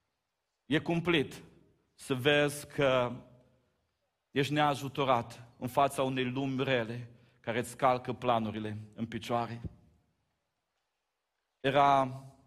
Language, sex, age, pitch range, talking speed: Romanian, male, 40-59, 125-150 Hz, 90 wpm